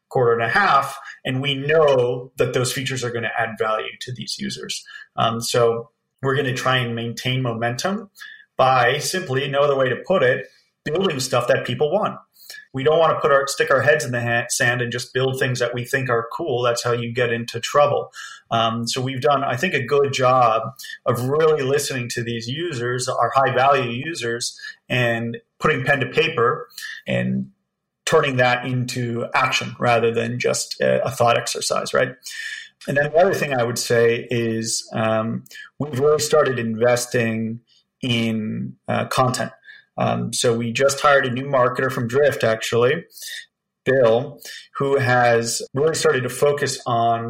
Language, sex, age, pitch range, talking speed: English, male, 30-49, 115-140 Hz, 175 wpm